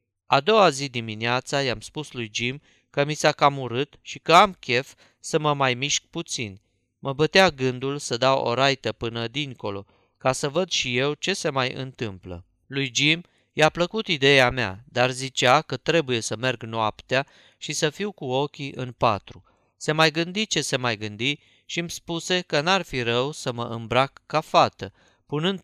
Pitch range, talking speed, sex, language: 120-160 Hz, 185 wpm, male, Romanian